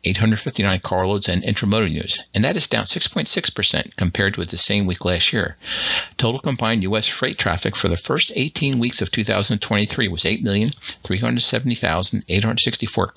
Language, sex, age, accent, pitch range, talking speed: English, male, 60-79, American, 95-110 Hz, 135 wpm